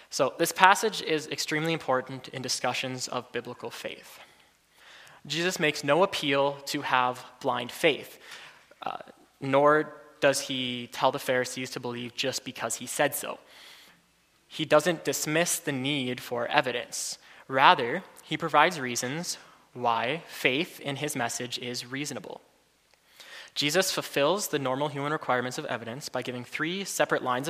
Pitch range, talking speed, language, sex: 125-155 Hz, 140 wpm, English, male